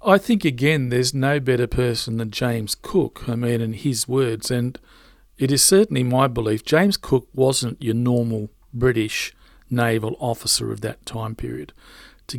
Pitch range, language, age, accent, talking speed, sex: 120-155 Hz, English, 40-59, Australian, 165 wpm, male